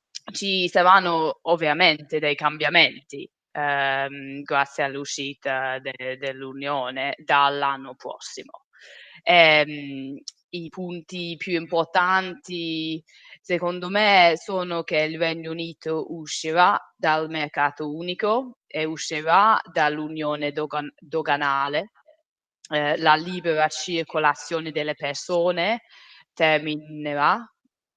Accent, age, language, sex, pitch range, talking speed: native, 20-39, Italian, female, 150-175 Hz, 80 wpm